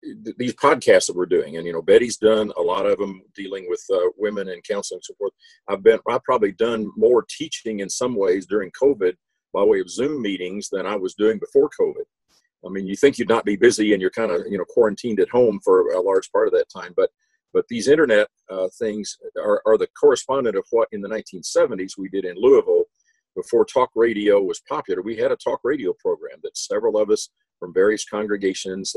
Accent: American